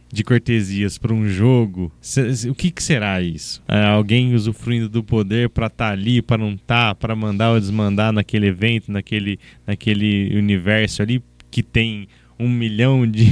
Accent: Brazilian